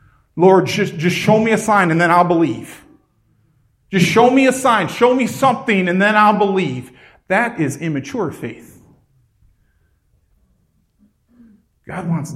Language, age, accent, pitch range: English, 40-59, American, 165-255 Hz